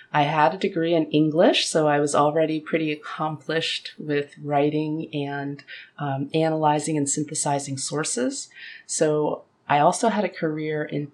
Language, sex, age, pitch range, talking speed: English, female, 30-49, 140-170 Hz, 145 wpm